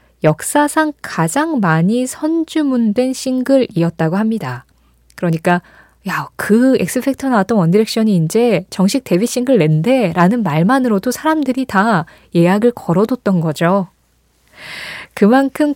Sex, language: female, Korean